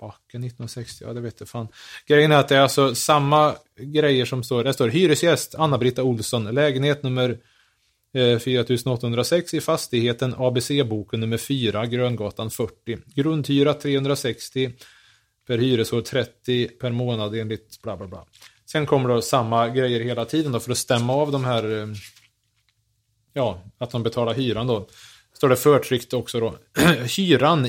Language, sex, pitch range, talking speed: Swedish, male, 110-130 Hz, 150 wpm